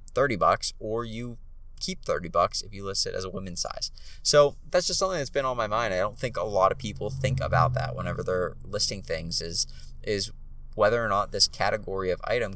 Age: 20-39